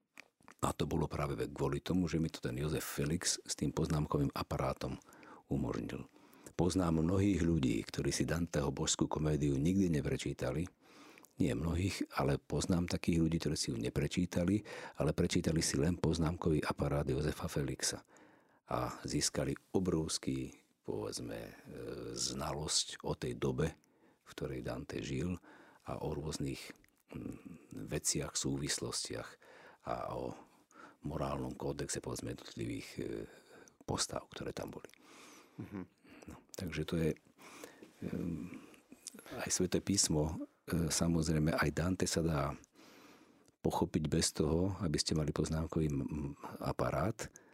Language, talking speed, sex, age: Slovak, 115 wpm, male, 50-69